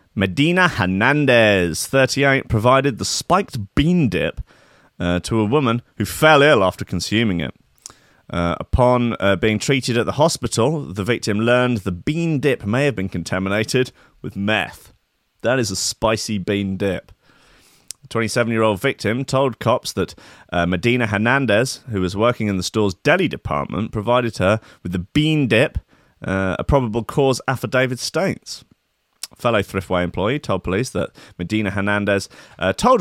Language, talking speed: English, 150 wpm